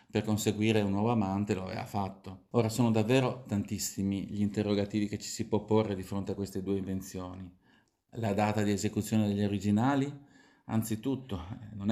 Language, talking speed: Italian, 165 wpm